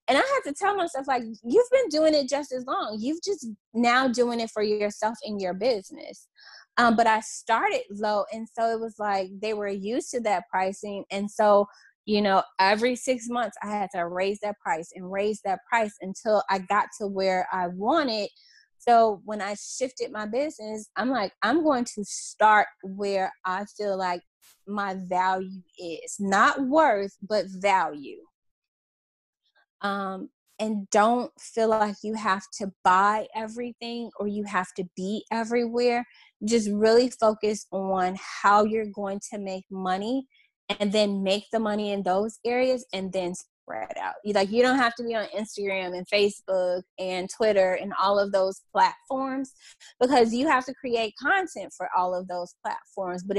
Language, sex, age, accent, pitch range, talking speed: English, female, 20-39, American, 195-240 Hz, 175 wpm